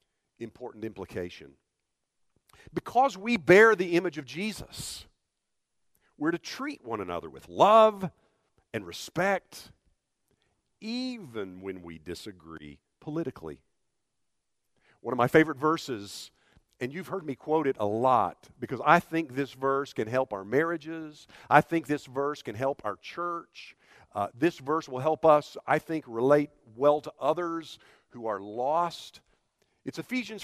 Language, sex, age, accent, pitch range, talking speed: English, male, 50-69, American, 130-195 Hz, 140 wpm